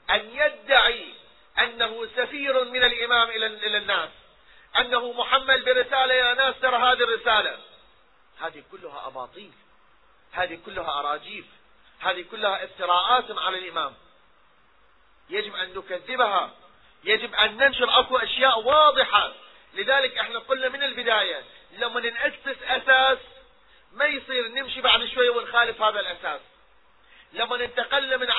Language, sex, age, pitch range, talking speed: Arabic, male, 30-49, 220-260 Hz, 115 wpm